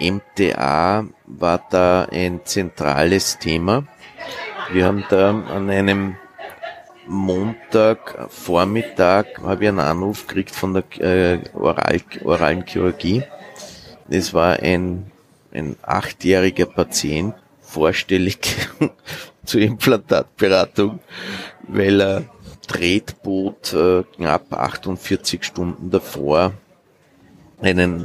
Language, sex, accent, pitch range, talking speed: German, male, Austrian, 90-100 Hz, 80 wpm